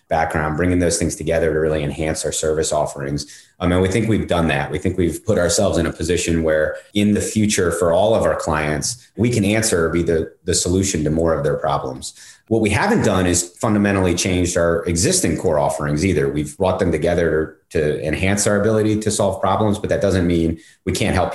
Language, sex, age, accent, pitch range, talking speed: English, male, 30-49, American, 80-95 Hz, 220 wpm